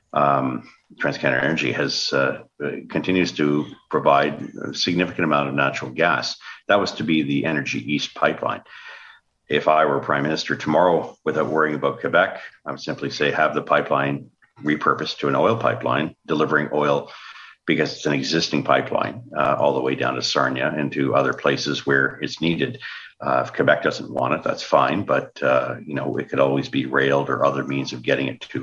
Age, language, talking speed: 50-69, English, 185 wpm